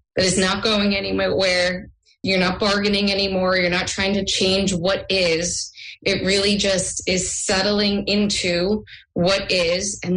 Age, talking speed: 20-39, 155 wpm